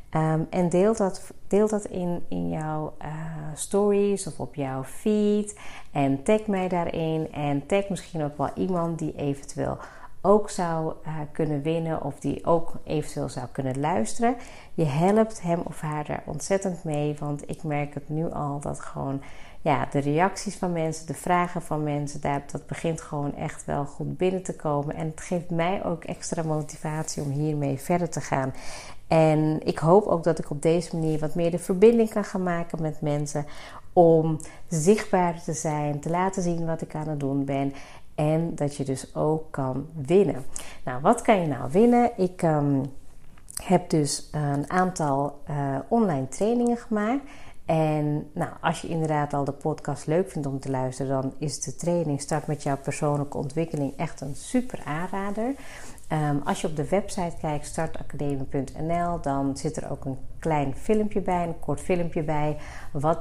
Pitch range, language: 145-180 Hz, Dutch